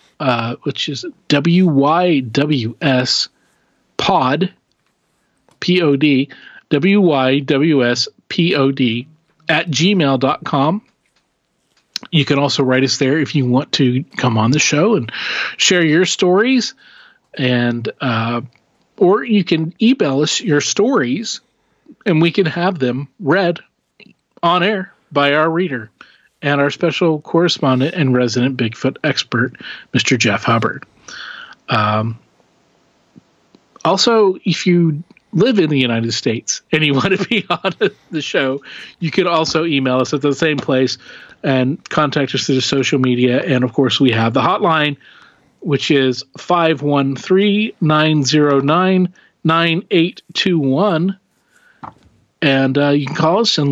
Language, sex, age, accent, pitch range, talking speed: English, male, 40-59, American, 135-175 Hz, 120 wpm